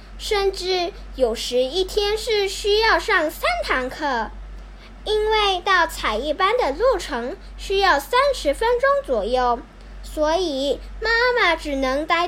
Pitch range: 280-405 Hz